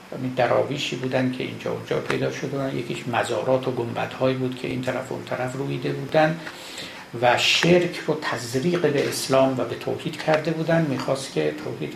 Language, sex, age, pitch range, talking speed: Persian, male, 60-79, 120-145 Hz, 185 wpm